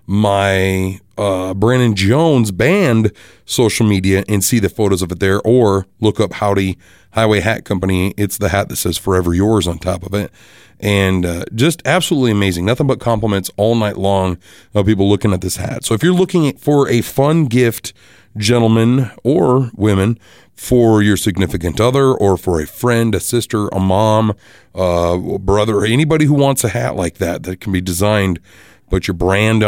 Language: English